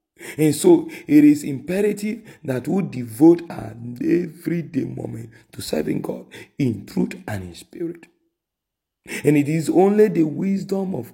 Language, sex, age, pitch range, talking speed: English, male, 50-69, 120-185 Hz, 140 wpm